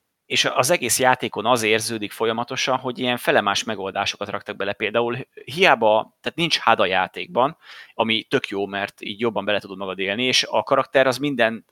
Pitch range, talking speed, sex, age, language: 105-130 Hz, 180 wpm, male, 30-49, Hungarian